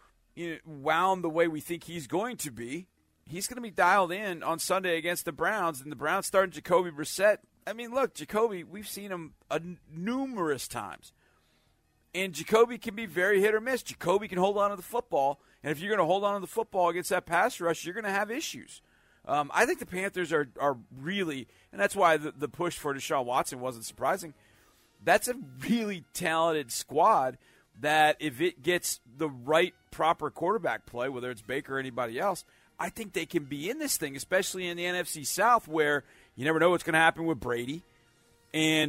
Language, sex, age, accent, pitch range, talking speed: English, male, 40-59, American, 140-190 Hz, 210 wpm